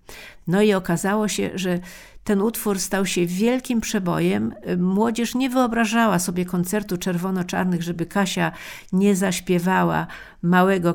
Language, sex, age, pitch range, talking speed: Polish, female, 50-69, 180-220 Hz, 120 wpm